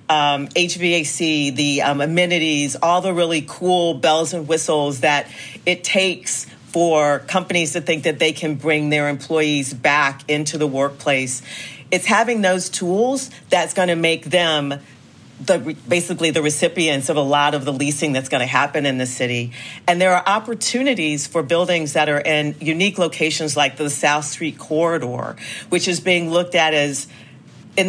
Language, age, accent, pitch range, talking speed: English, 40-59, American, 145-175 Hz, 165 wpm